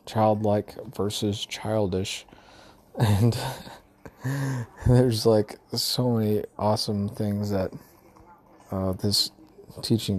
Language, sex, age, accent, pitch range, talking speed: English, male, 20-39, American, 100-110 Hz, 80 wpm